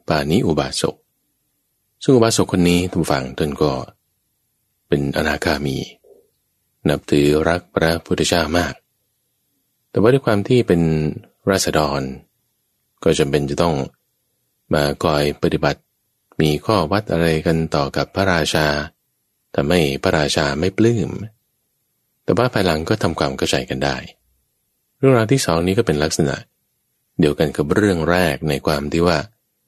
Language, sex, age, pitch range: English, male, 20-39, 75-100 Hz